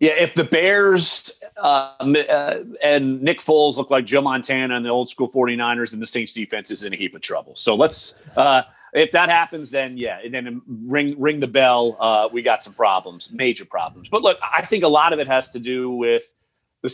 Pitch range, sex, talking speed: 120-160 Hz, male, 225 wpm